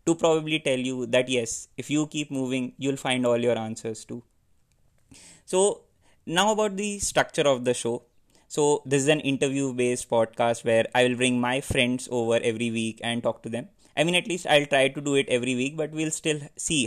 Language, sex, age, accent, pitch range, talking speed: English, male, 20-39, Indian, 125-155 Hz, 210 wpm